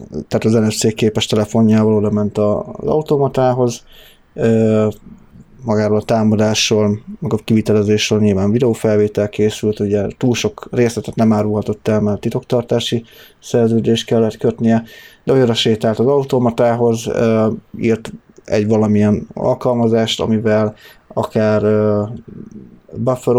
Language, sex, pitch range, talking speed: Hungarian, male, 105-120 Hz, 110 wpm